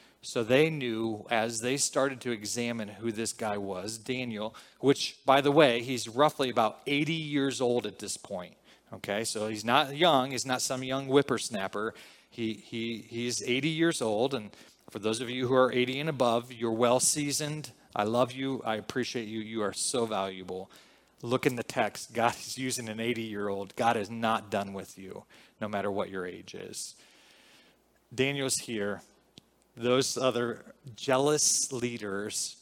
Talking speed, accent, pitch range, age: 170 wpm, American, 110-130 Hz, 30-49